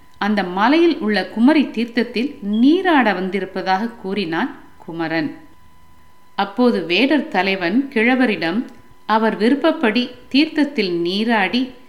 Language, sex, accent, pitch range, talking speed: Tamil, female, native, 175-255 Hz, 85 wpm